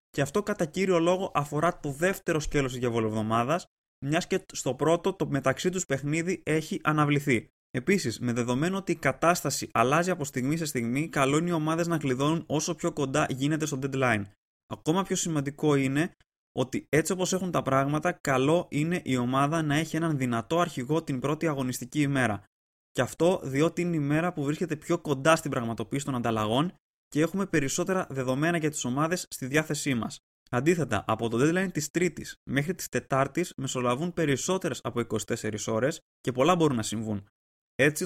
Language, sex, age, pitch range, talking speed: Greek, male, 20-39, 130-170 Hz, 175 wpm